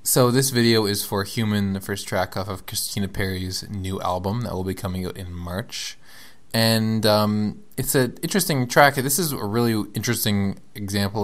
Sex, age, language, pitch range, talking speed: male, 20-39, English, 95-110 Hz, 180 wpm